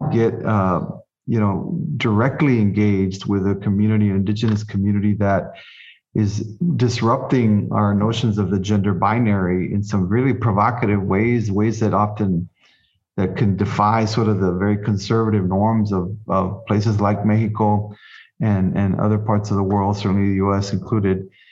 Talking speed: 150 wpm